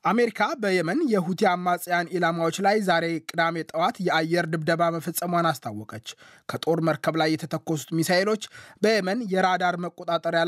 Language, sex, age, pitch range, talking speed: Amharic, male, 20-39, 155-180 Hz, 120 wpm